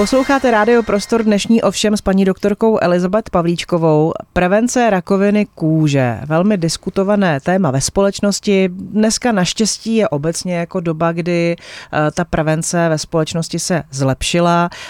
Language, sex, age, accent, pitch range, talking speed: Czech, female, 30-49, native, 155-185 Hz, 120 wpm